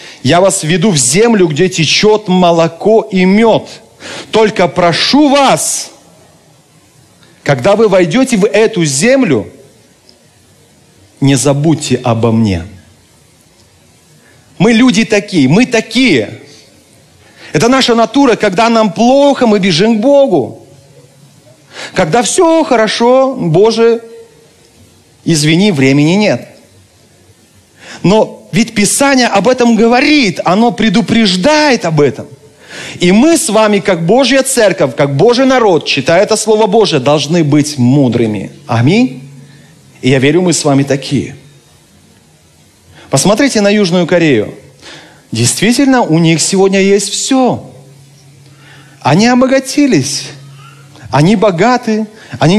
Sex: male